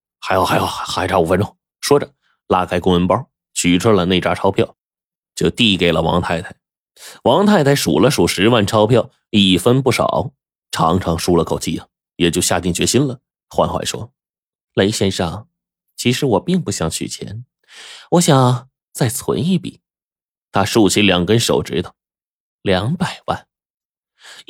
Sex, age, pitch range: male, 20-39, 90-150 Hz